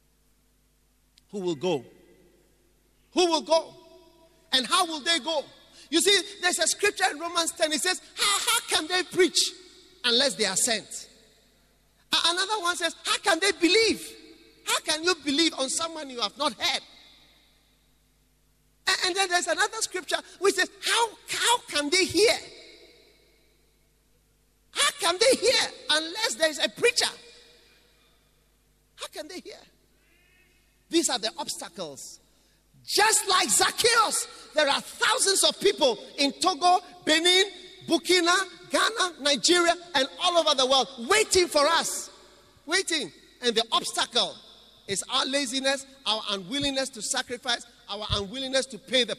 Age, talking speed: 40-59, 140 wpm